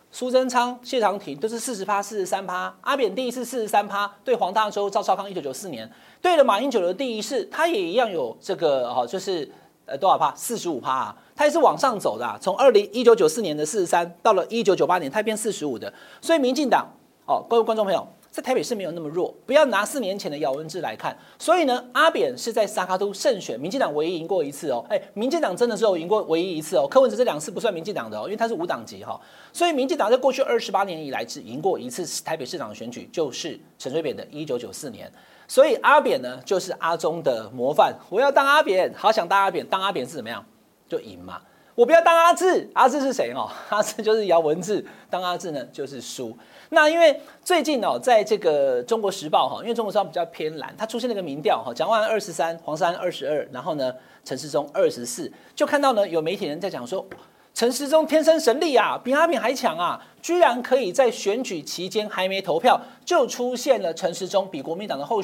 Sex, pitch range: male, 195-300 Hz